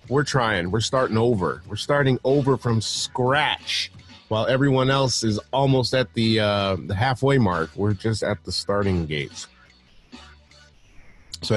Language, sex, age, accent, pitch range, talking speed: English, male, 30-49, American, 95-130 Hz, 145 wpm